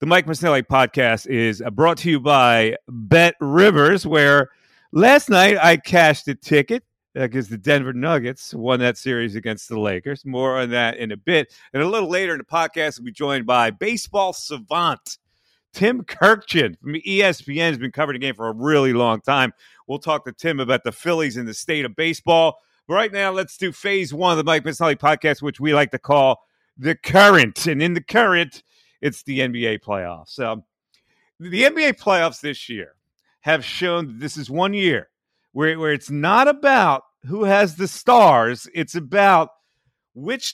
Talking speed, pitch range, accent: 185 wpm, 135-195 Hz, American